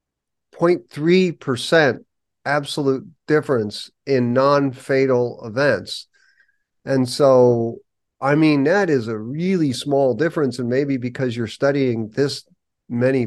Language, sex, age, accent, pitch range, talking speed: English, male, 40-59, American, 120-150 Hz, 105 wpm